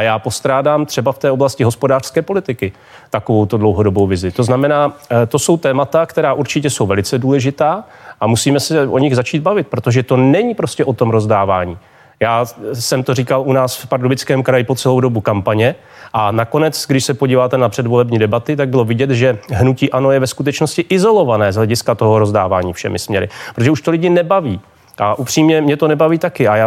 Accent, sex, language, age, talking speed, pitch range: native, male, Czech, 30-49, 195 wpm, 115-145 Hz